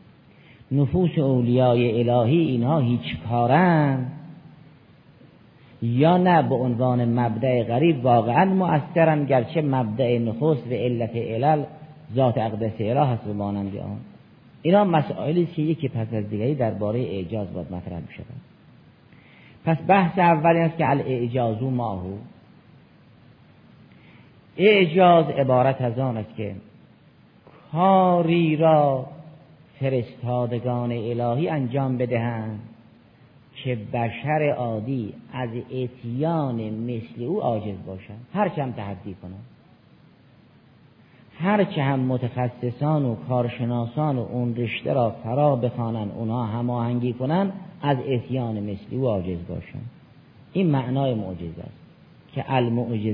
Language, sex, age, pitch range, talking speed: Persian, male, 50-69, 115-150 Hz, 110 wpm